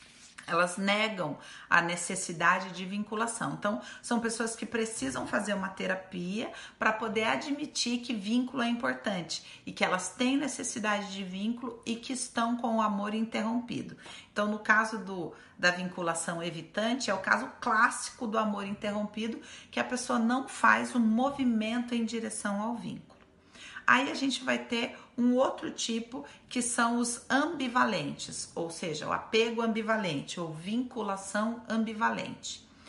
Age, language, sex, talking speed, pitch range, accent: 40-59, Portuguese, female, 145 wpm, 185-235 Hz, Brazilian